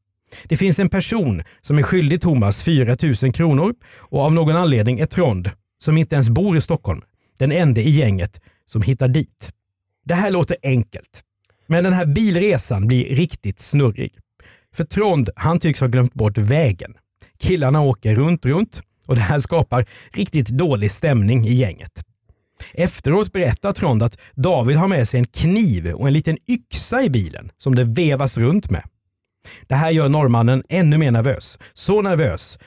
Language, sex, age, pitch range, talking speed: Swedish, male, 50-69, 105-160 Hz, 165 wpm